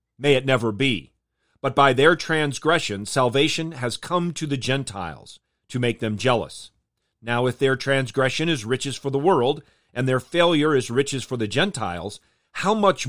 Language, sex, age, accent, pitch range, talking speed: English, male, 40-59, American, 115-150 Hz, 170 wpm